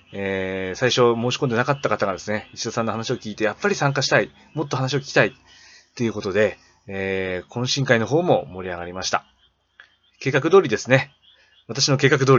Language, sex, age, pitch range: Japanese, male, 20-39, 90-125 Hz